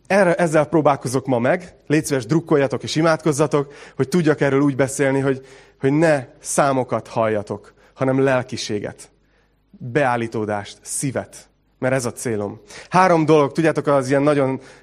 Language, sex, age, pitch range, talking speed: Hungarian, male, 30-49, 125-145 Hz, 140 wpm